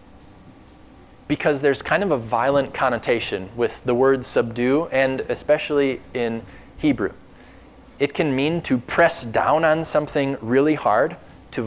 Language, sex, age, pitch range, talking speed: English, male, 20-39, 125-155 Hz, 135 wpm